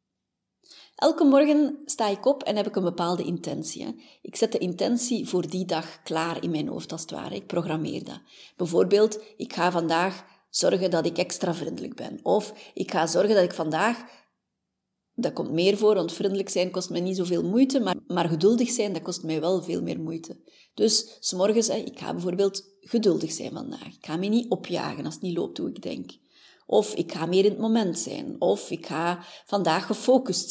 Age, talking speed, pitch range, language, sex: 30-49, 195 wpm, 180-255 Hz, Dutch, female